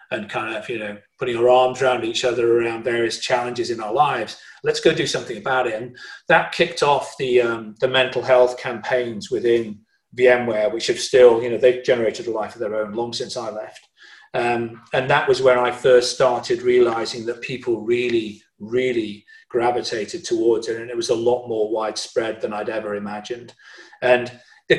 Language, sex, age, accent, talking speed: English, male, 40-59, British, 195 wpm